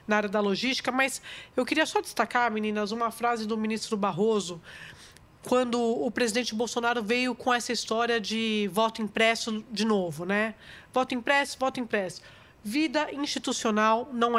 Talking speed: 150 wpm